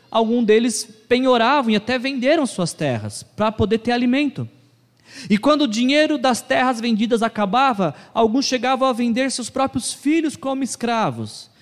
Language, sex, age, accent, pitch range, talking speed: Portuguese, male, 20-39, Brazilian, 155-220 Hz, 150 wpm